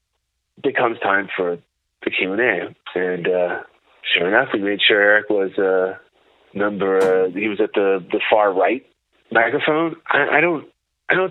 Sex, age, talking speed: male, 30-49, 175 wpm